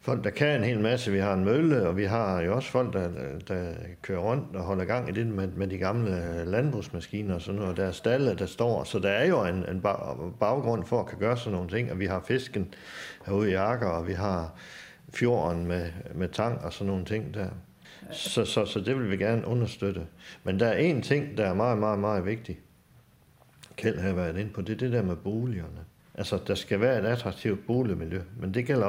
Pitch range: 90-115 Hz